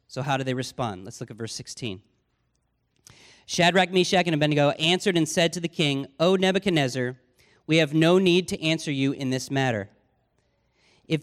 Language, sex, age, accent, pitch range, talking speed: English, male, 40-59, American, 130-185 Hz, 175 wpm